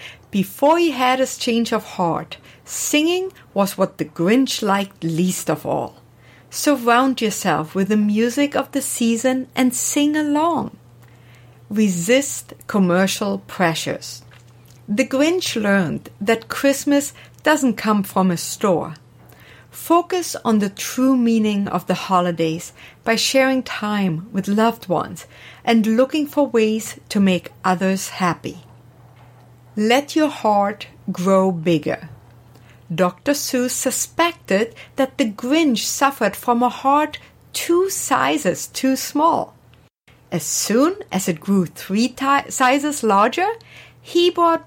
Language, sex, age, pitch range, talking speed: English, female, 60-79, 180-265 Hz, 120 wpm